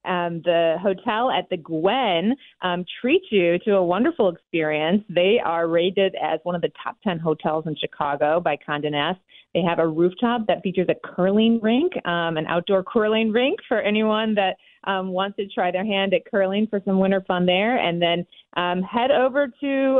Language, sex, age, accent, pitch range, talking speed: English, female, 30-49, American, 165-210 Hz, 190 wpm